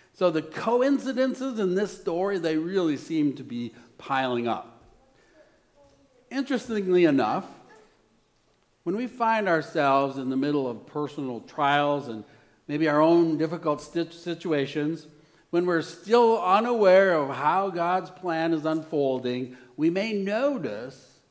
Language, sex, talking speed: English, male, 125 wpm